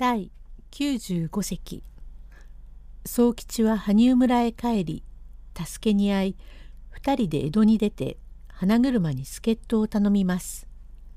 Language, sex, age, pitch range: Japanese, female, 60-79, 195-260 Hz